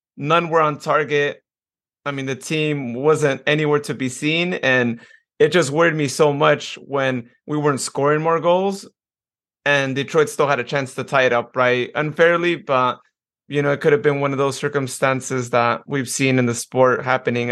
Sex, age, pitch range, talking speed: male, 30-49, 140-160 Hz, 190 wpm